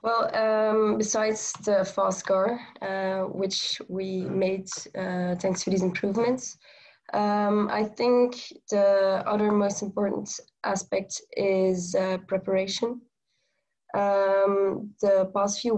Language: English